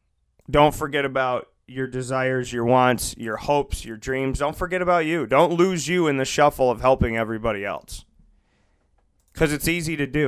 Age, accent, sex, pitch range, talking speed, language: 30-49, American, male, 100-145 Hz, 175 wpm, English